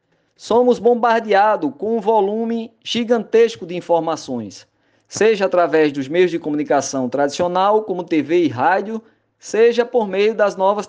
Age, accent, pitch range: 20-39, Brazilian, 185-230 Hz